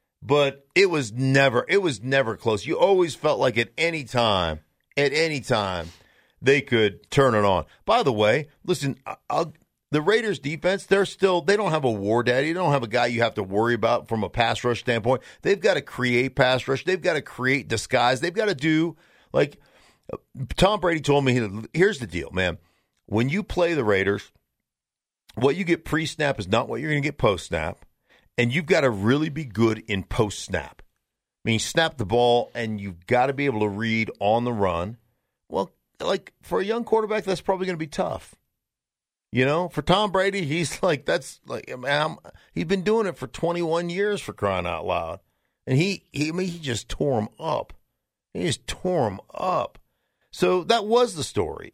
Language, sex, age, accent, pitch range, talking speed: English, male, 50-69, American, 115-170 Hz, 205 wpm